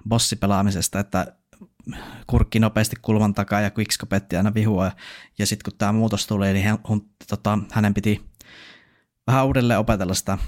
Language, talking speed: Finnish, 130 wpm